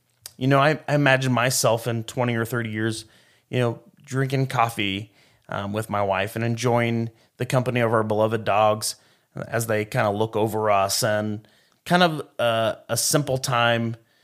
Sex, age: male, 30-49